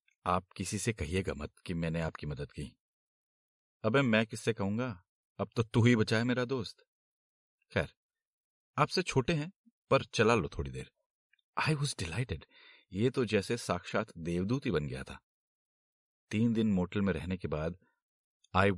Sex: male